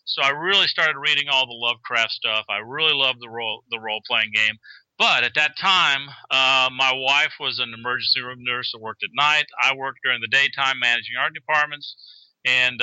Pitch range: 120-145 Hz